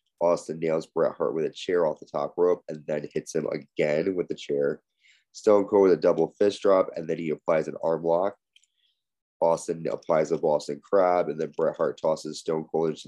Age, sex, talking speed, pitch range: 20-39, male, 210 wpm, 80-105 Hz